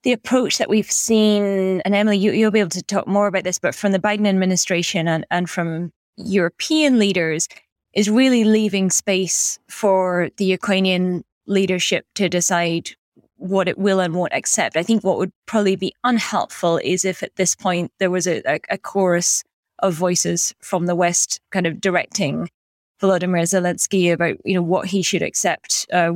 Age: 20-39